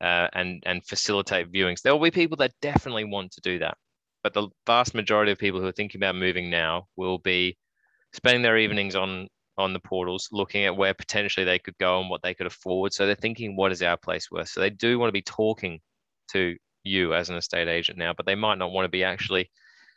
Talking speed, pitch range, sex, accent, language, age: 230 wpm, 90-105 Hz, male, Australian, English, 20-39